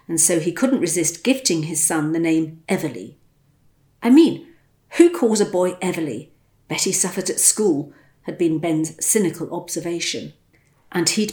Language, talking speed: English, 155 wpm